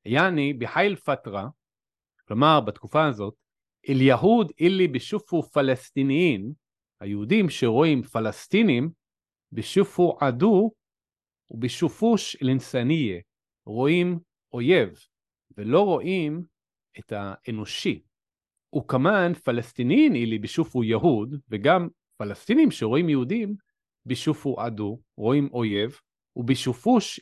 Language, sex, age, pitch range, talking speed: Hebrew, male, 40-59, 115-160 Hz, 75 wpm